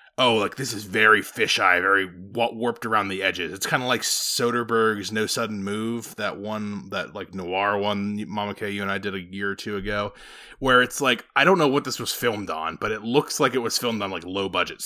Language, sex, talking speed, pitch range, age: English, male, 230 wpm, 100-130 Hz, 20-39